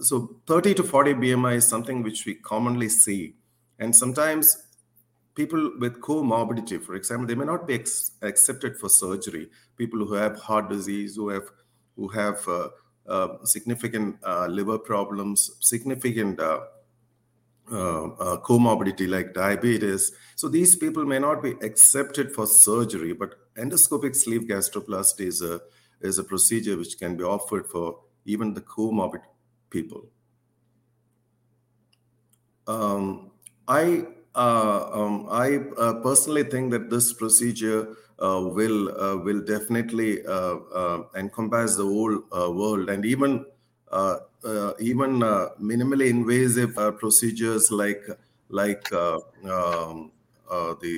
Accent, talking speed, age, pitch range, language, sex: Indian, 135 wpm, 50-69, 100-120 Hz, English, male